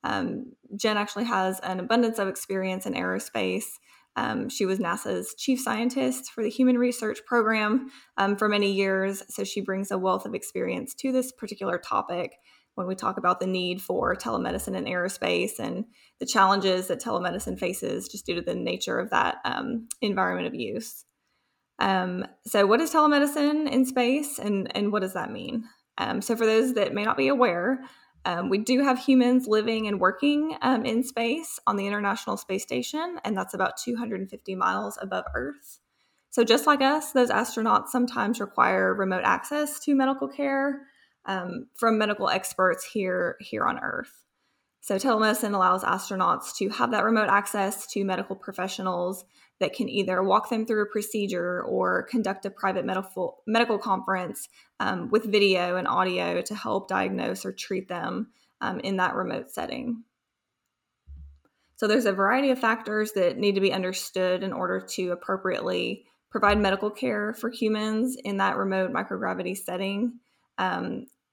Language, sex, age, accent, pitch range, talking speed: English, female, 10-29, American, 190-245 Hz, 165 wpm